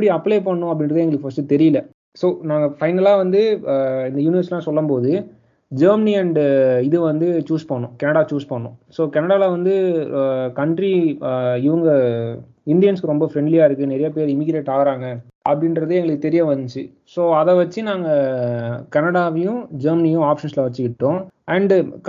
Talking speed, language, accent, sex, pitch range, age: 135 wpm, Tamil, native, male, 140-175 Hz, 20-39